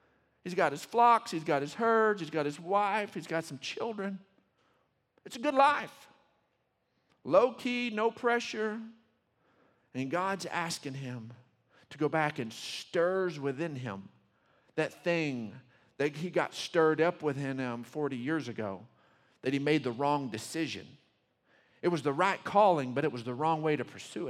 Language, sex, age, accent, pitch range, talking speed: English, male, 50-69, American, 150-230 Hz, 165 wpm